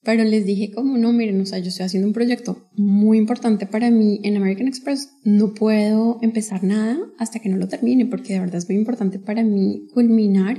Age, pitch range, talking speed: 20-39, 195-235 Hz, 215 wpm